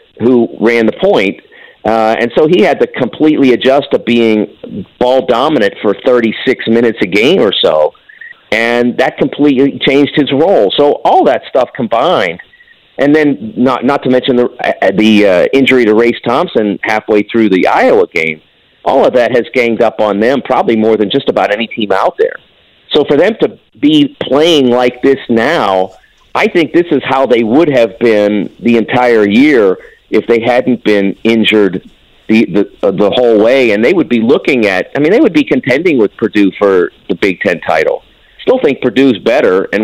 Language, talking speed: English, 190 wpm